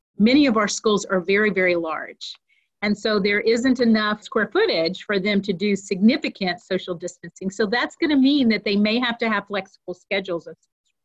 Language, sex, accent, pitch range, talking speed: English, female, American, 195-235 Hz, 185 wpm